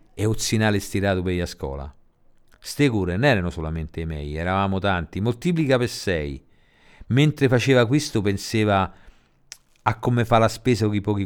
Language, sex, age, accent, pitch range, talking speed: Italian, male, 50-69, native, 80-125 Hz, 155 wpm